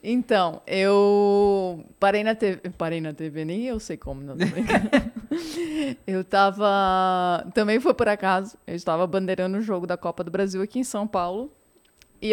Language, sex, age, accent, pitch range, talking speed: Portuguese, female, 20-39, Brazilian, 185-235 Hz, 175 wpm